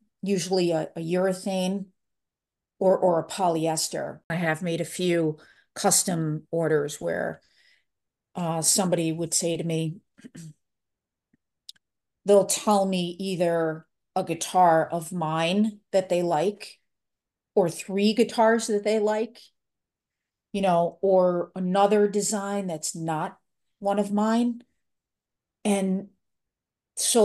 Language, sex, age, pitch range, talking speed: English, female, 40-59, 160-200 Hz, 110 wpm